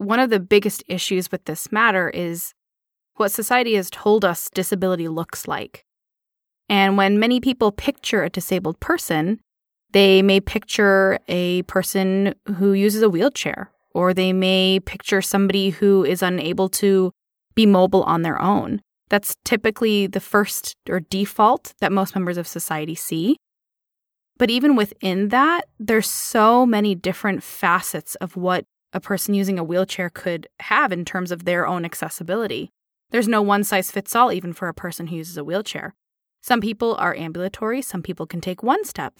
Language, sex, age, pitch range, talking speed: English, female, 20-39, 180-220 Hz, 160 wpm